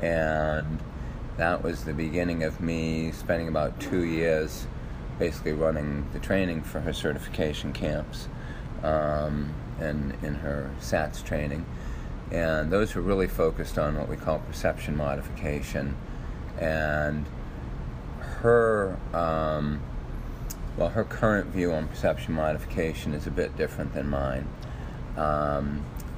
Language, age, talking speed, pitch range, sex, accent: English, 40-59, 120 wpm, 70-80 Hz, male, American